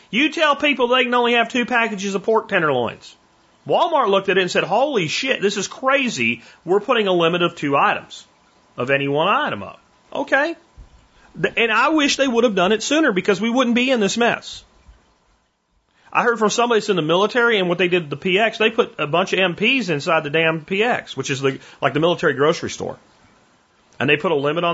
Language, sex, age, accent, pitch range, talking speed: English, male, 40-59, American, 135-225 Hz, 220 wpm